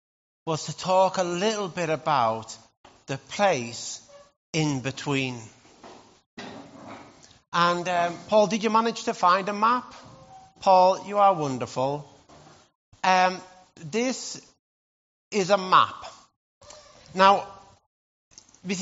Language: English